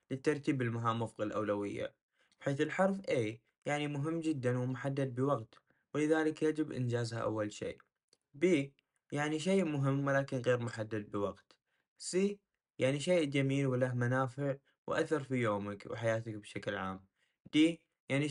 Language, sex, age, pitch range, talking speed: Arabic, male, 20-39, 115-155 Hz, 130 wpm